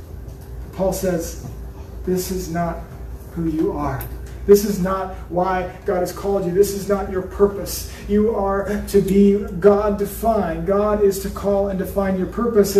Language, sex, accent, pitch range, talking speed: English, male, American, 160-205 Hz, 165 wpm